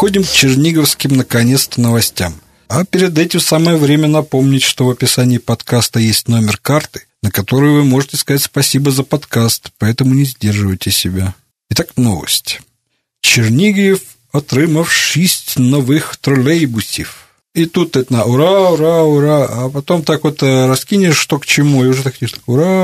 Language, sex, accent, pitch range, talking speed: Russian, male, native, 125-160 Hz, 145 wpm